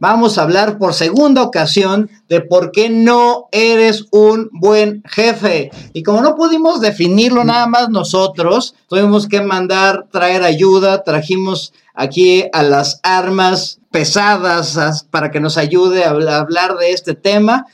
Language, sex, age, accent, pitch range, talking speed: Spanish, male, 40-59, Mexican, 165-215 Hz, 140 wpm